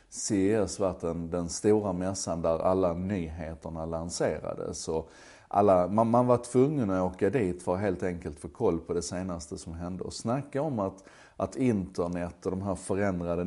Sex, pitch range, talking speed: male, 85-100 Hz, 180 wpm